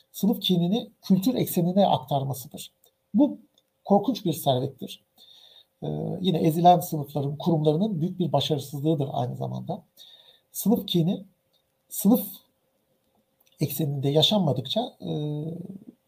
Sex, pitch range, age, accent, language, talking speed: male, 145-195 Hz, 60-79, native, Turkish, 95 wpm